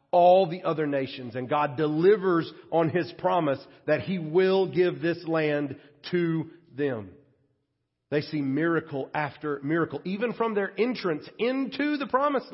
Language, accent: English, American